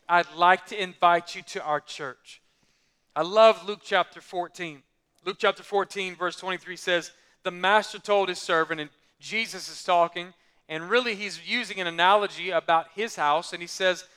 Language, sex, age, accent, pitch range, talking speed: English, male, 40-59, American, 185-245 Hz, 170 wpm